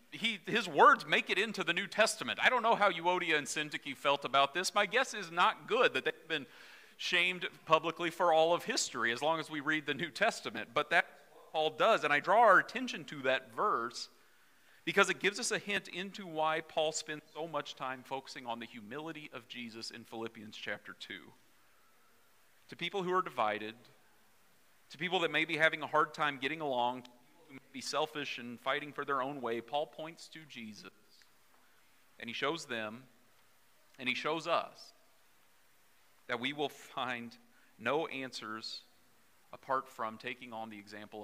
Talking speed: 180 wpm